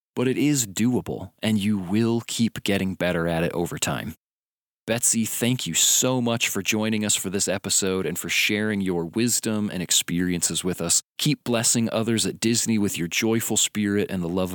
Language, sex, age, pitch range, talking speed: English, male, 30-49, 95-115 Hz, 190 wpm